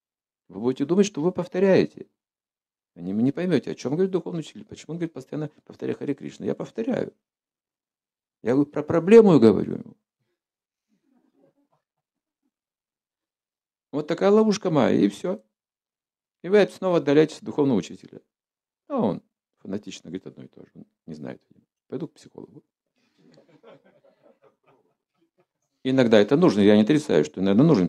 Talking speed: 140 wpm